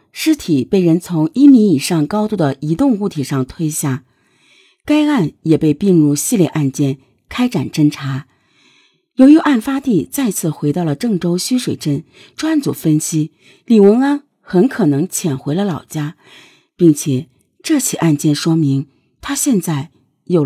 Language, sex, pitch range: Chinese, female, 145-235 Hz